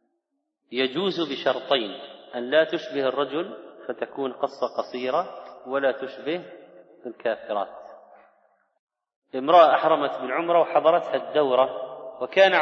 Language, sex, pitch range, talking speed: Arabic, male, 130-175 Hz, 90 wpm